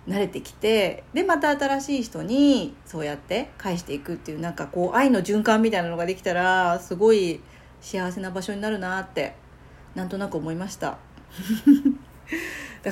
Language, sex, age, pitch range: Japanese, female, 40-59, 165-255 Hz